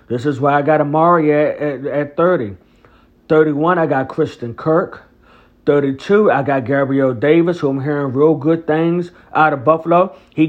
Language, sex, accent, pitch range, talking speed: English, male, American, 135-160 Hz, 170 wpm